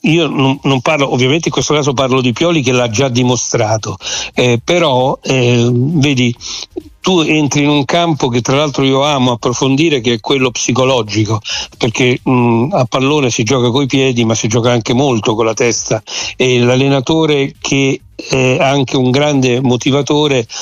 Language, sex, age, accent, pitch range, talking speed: Italian, male, 60-79, native, 125-145 Hz, 170 wpm